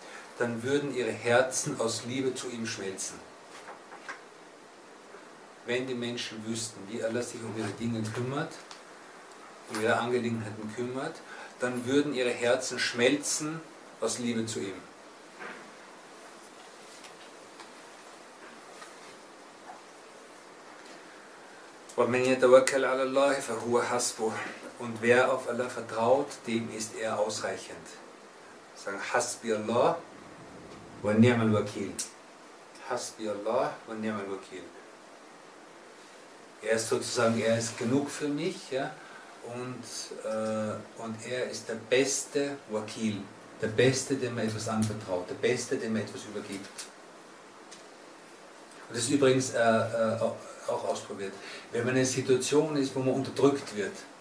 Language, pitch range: German, 110-130 Hz